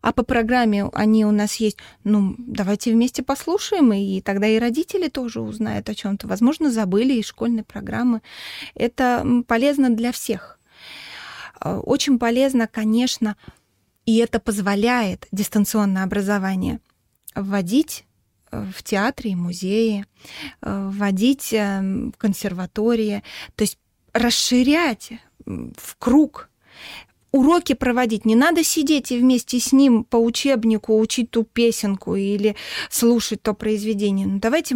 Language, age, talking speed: Russian, 20-39, 120 wpm